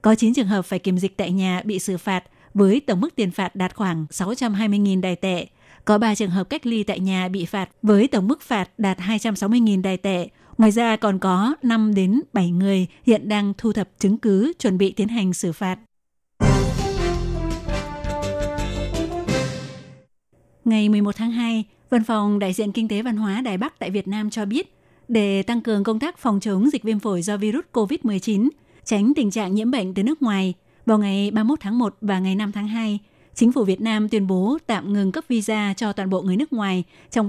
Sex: female